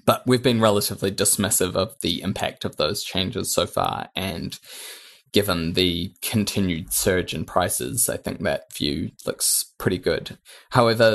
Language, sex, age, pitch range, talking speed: English, male, 20-39, 100-115 Hz, 150 wpm